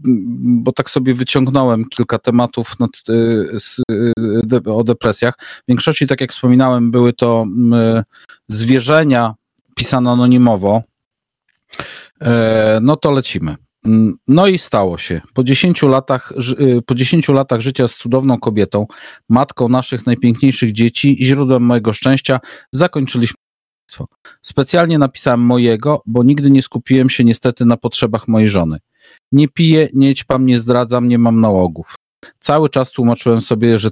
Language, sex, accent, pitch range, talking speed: Polish, male, native, 115-135 Hz, 140 wpm